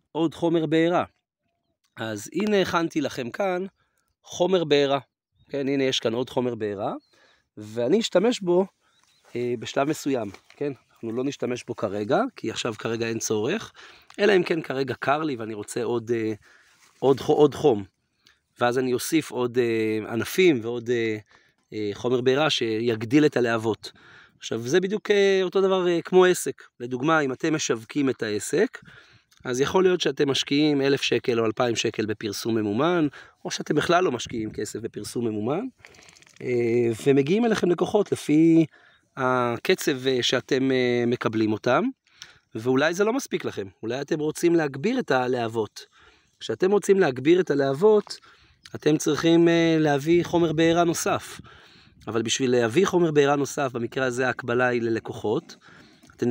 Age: 30-49